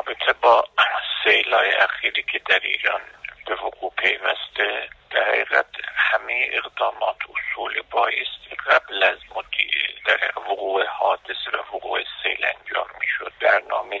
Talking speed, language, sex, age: 110 wpm, Persian, male, 60-79